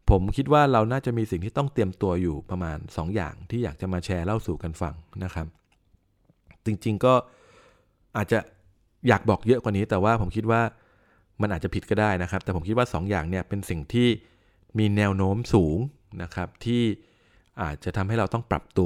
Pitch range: 90-110 Hz